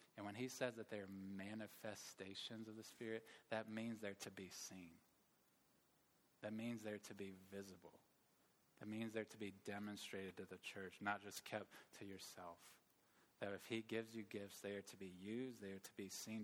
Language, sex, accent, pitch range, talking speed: English, male, American, 100-115 Hz, 185 wpm